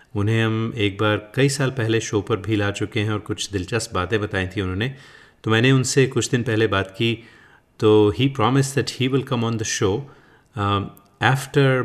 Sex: male